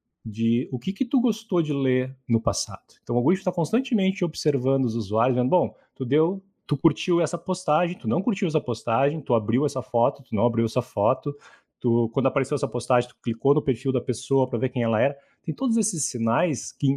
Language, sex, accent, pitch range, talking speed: Portuguese, male, Brazilian, 120-185 Hz, 215 wpm